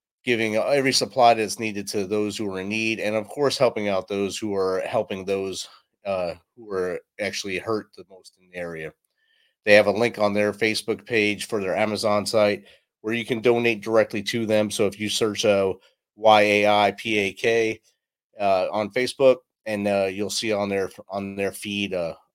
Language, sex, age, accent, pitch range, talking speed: English, male, 30-49, American, 100-115 Hz, 180 wpm